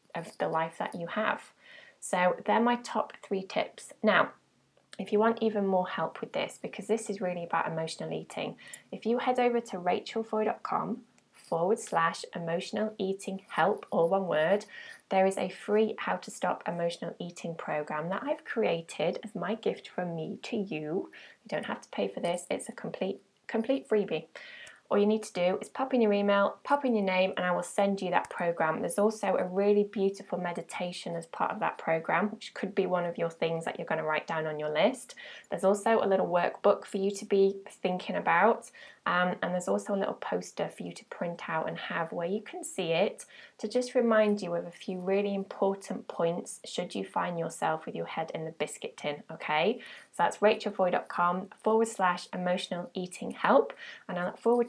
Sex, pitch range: female, 180-220 Hz